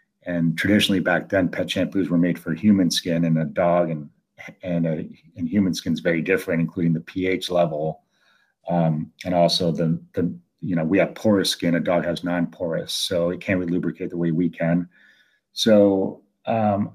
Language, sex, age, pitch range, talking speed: English, male, 40-59, 85-95 Hz, 190 wpm